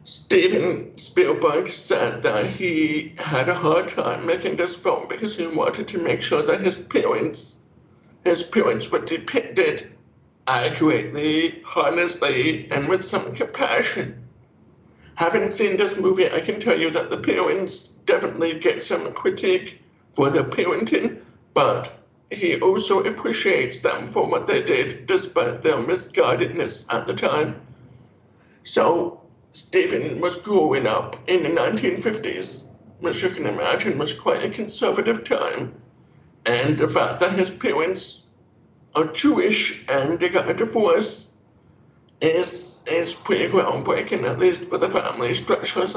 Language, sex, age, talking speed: English, male, 60-79, 135 wpm